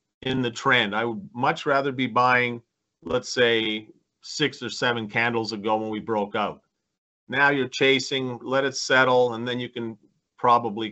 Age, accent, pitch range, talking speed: 40-59, American, 115-135 Hz, 170 wpm